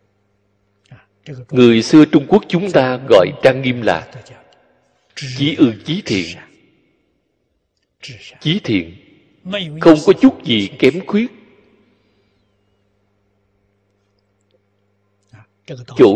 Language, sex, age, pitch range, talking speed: Vietnamese, male, 60-79, 100-165 Hz, 85 wpm